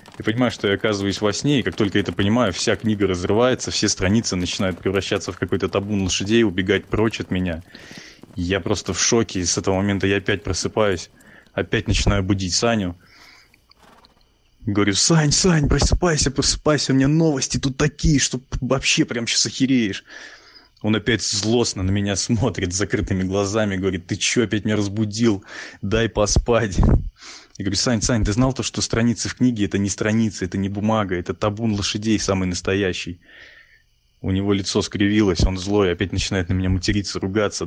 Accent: native